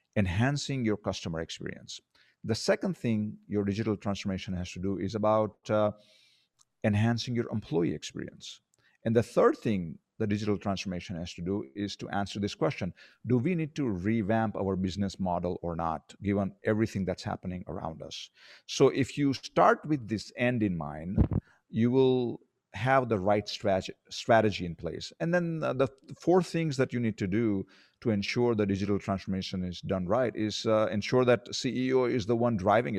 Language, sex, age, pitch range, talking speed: English, male, 50-69, 95-120 Hz, 175 wpm